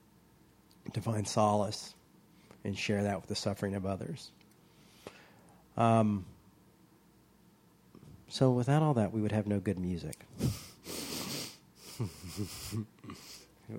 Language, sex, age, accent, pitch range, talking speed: English, male, 40-59, American, 105-150 Hz, 100 wpm